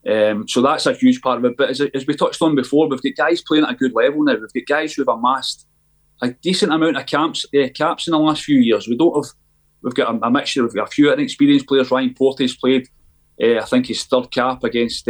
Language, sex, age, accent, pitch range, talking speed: English, male, 30-49, British, 115-150 Hz, 260 wpm